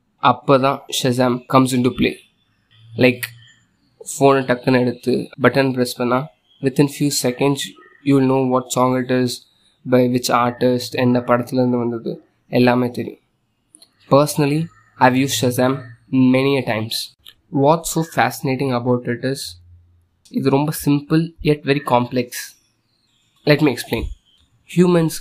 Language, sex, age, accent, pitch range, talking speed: Tamil, male, 20-39, native, 125-140 Hz, 140 wpm